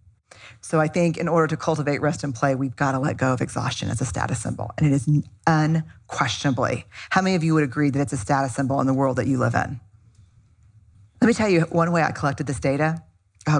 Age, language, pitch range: 40-59, English, 110-165 Hz